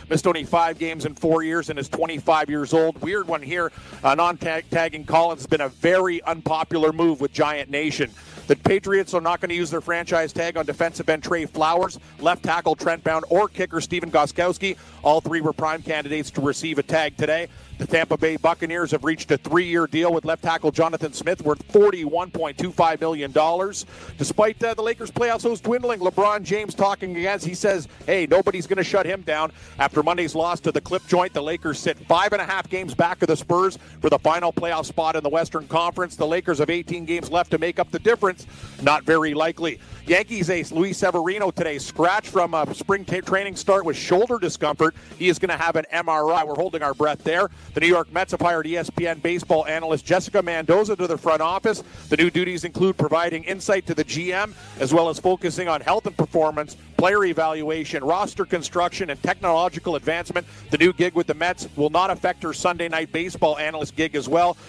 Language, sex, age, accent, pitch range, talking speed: English, male, 50-69, American, 155-180 Hz, 205 wpm